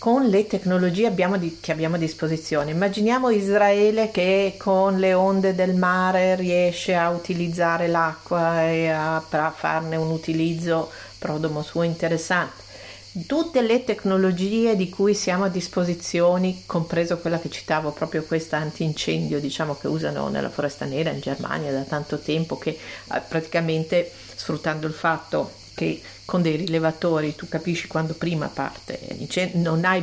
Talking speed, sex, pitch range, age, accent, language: 135 wpm, female, 160-200 Hz, 40-59, native, Italian